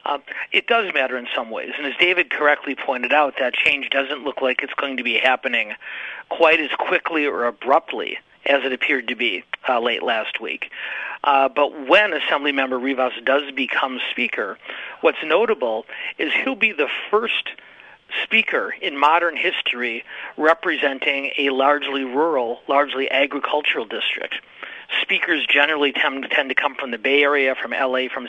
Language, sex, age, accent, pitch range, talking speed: English, male, 40-59, American, 130-145 Hz, 160 wpm